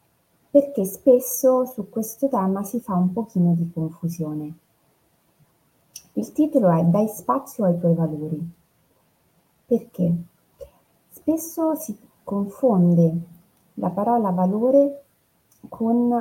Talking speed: 100 wpm